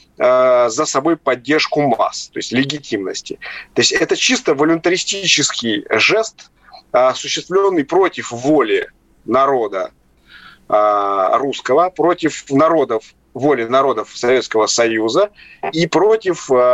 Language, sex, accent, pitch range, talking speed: Russian, male, native, 125-195 Hz, 90 wpm